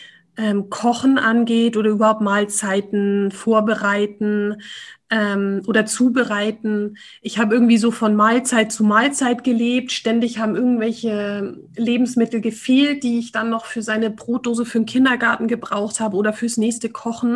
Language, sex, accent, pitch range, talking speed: German, female, German, 200-235 Hz, 140 wpm